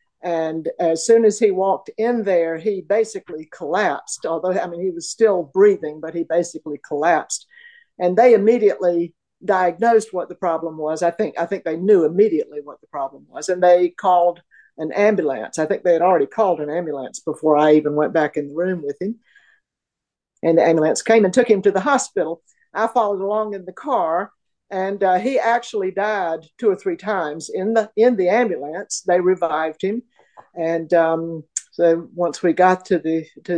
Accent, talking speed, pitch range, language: American, 190 wpm, 165-215 Hz, English